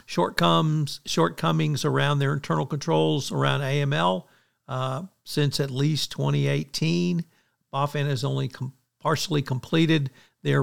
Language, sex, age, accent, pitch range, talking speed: English, male, 60-79, American, 135-180 Hz, 105 wpm